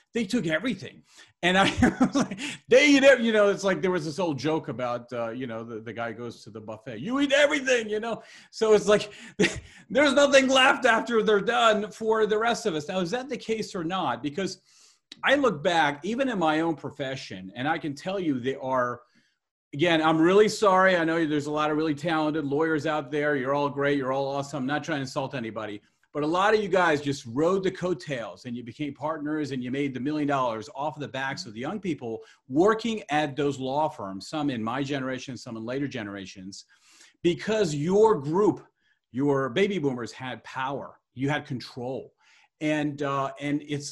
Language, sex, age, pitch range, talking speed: English, male, 40-59, 135-210 Hz, 210 wpm